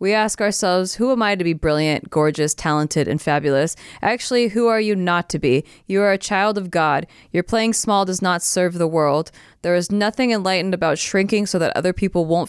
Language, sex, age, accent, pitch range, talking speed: English, female, 20-39, American, 155-190 Hz, 215 wpm